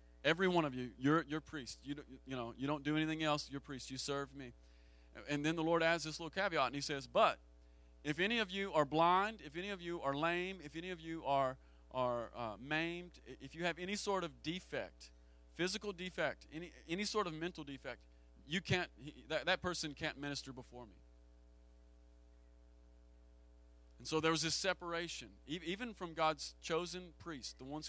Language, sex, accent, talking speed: English, male, American, 195 wpm